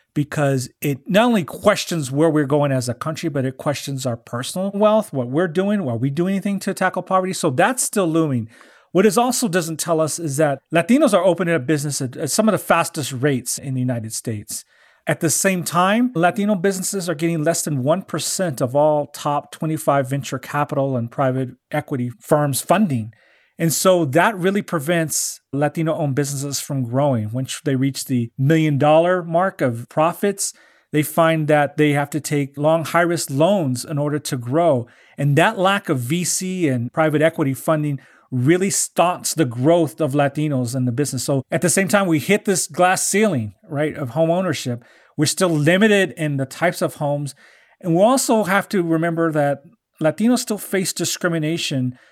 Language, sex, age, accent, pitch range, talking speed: English, male, 40-59, American, 140-175 Hz, 185 wpm